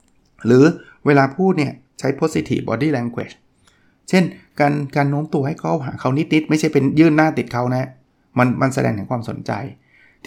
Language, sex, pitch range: Thai, male, 120-155 Hz